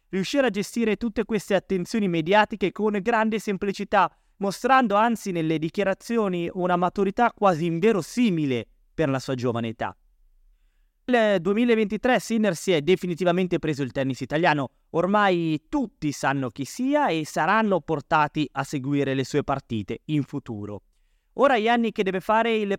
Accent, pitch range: native, 140-205 Hz